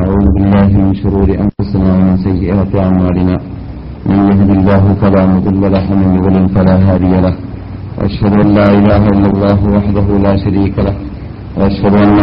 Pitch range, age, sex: 95-100 Hz, 40-59, male